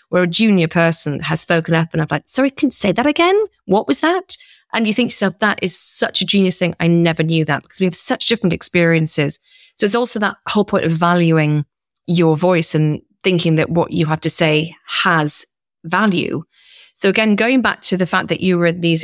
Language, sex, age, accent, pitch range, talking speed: English, female, 30-49, British, 165-210 Hz, 225 wpm